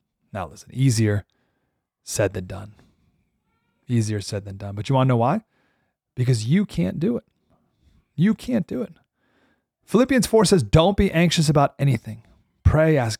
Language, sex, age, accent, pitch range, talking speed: English, male, 30-49, American, 110-150 Hz, 160 wpm